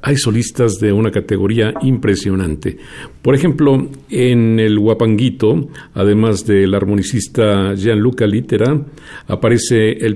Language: Spanish